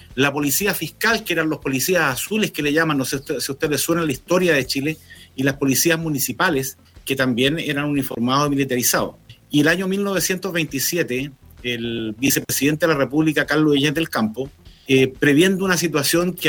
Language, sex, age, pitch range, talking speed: Spanish, male, 50-69, 135-170 Hz, 185 wpm